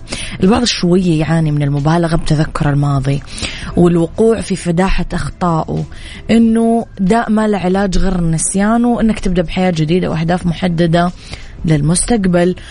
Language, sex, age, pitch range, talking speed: Arabic, female, 20-39, 160-215 Hz, 110 wpm